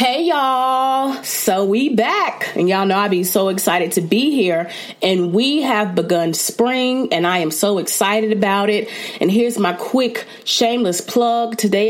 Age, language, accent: 30-49, English, American